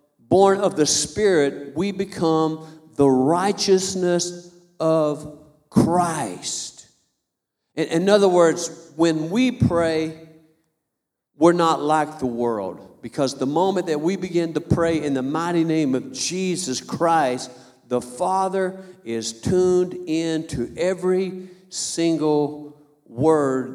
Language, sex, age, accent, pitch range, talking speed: English, male, 50-69, American, 145-190 Hz, 115 wpm